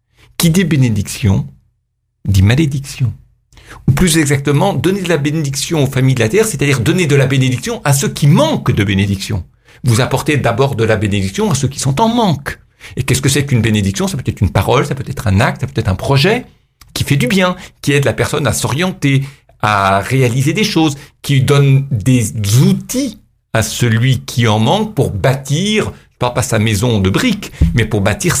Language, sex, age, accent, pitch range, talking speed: French, male, 60-79, French, 115-150 Hz, 200 wpm